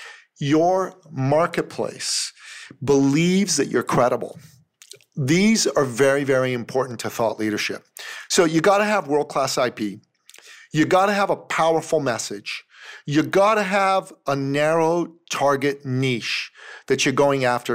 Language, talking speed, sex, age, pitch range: English, 140 wpm, male, 40-59, 130-170 Hz